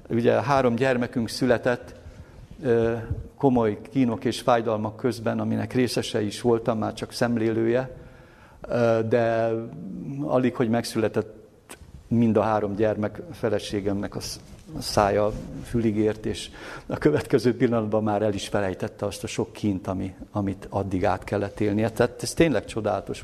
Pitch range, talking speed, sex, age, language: 110-125 Hz, 125 wpm, male, 50-69, Hungarian